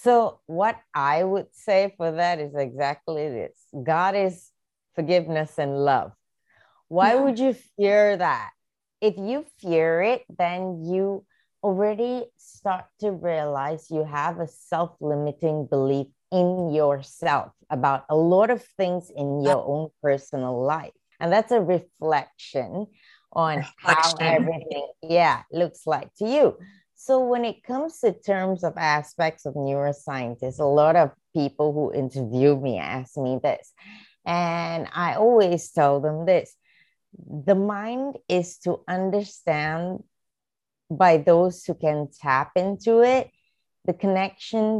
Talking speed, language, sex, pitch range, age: 130 wpm, English, female, 150-200 Hz, 30-49